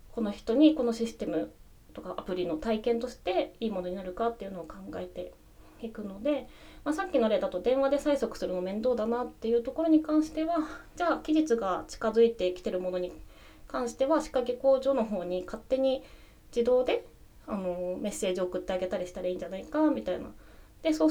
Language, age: Japanese, 20-39